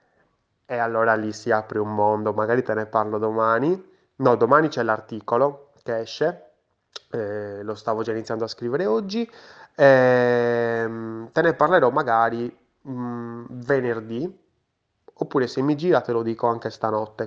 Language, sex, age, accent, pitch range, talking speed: Italian, male, 20-39, native, 115-135 Hz, 145 wpm